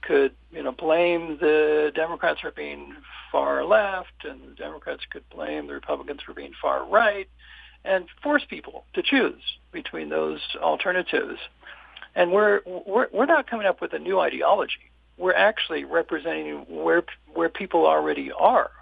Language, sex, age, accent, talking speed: English, male, 60-79, American, 150 wpm